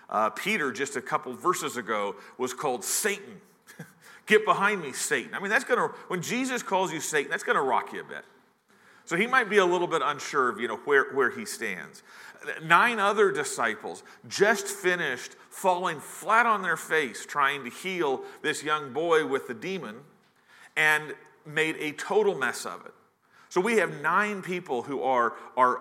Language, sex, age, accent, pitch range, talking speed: English, male, 40-59, American, 145-205 Hz, 185 wpm